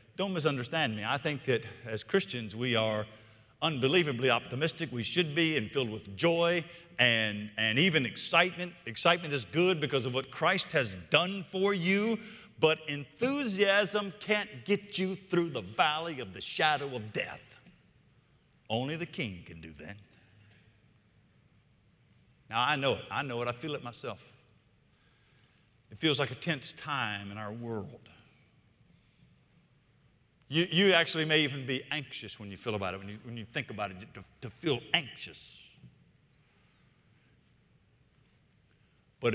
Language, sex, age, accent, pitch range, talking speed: English, male, 50-69, American, 115-165 Hz, 150 wpm